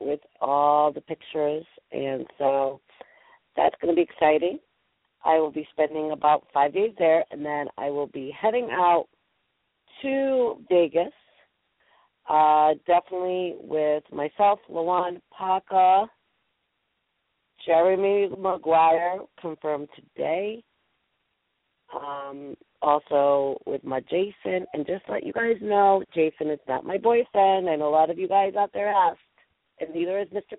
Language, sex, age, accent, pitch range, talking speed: English, female, 40-59, American, 150-195 Hz, 135 wpm